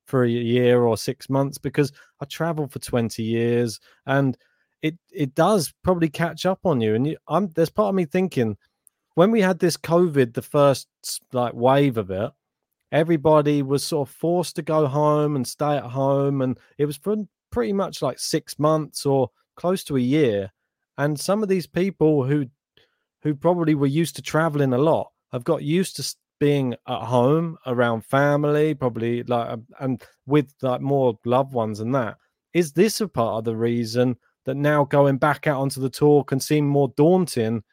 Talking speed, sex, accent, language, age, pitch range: 185 wpm, male, British, English, 30-49, 125-155 Hz